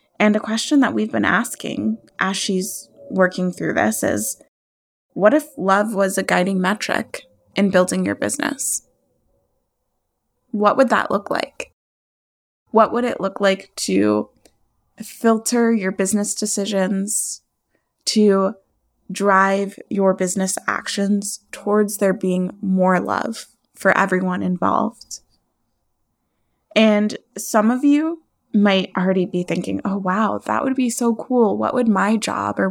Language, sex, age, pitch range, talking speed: English, female, 20-39, 190-235 Hz, 130 wpm